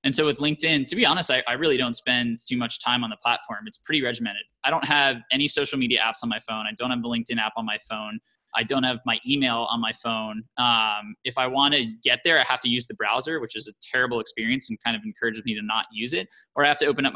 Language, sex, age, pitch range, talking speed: English, male, 20-39, 115-140 Hz, 285 wpm